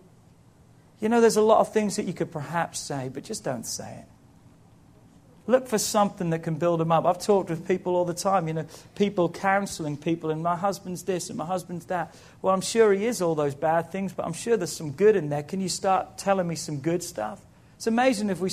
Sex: male